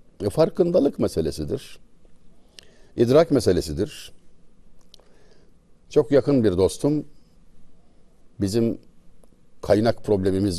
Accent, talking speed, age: native, 60 wpm, 60-79